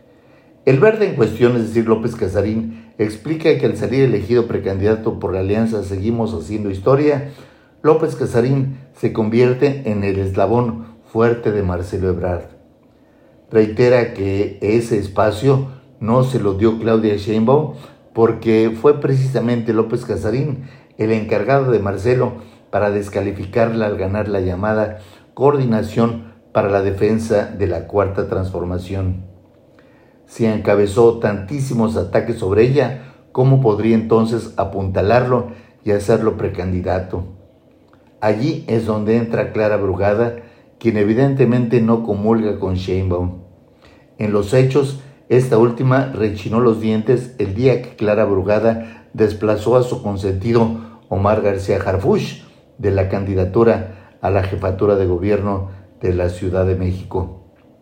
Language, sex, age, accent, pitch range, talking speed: Spanish, male, 50-69, Mexican, 100-120 Hz, 125 wpm